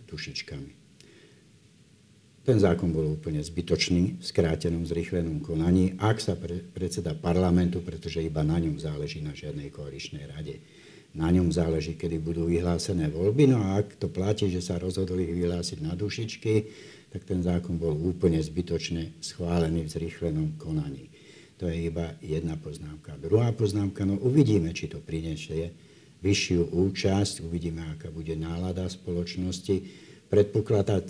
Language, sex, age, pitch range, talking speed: Slovak, male, 60-79, 80-95 Hz, 140 wpm